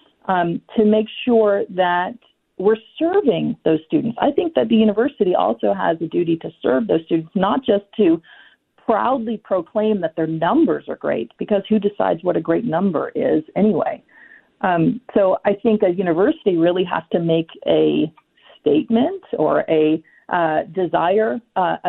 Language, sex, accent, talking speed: English, female, American, 160 wpm